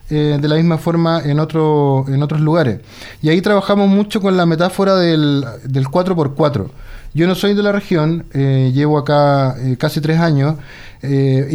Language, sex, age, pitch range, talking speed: Spanish, male, 30-49, 135-175 Hz, 175 wpm